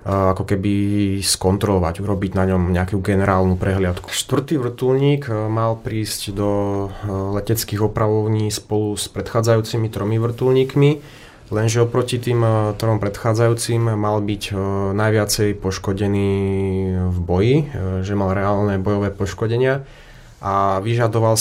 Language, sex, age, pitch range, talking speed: Slovak, male, 20-39, 100-110 Hz, 110 wpm